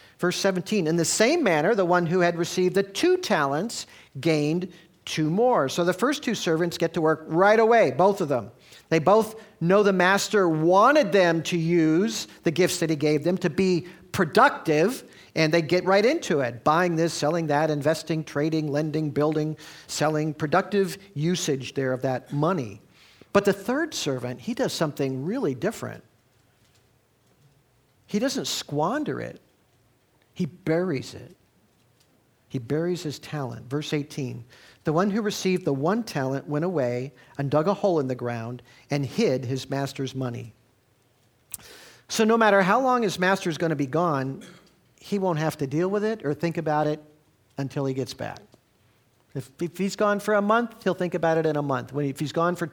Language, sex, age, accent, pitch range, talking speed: English, male, 50-69, American, 135-180 Hz, 175 wpm